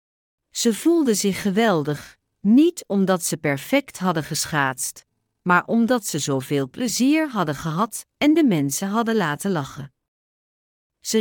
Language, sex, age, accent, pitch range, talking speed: English, female, 50-69, Dutch, 140-230 Hz, 130 wpm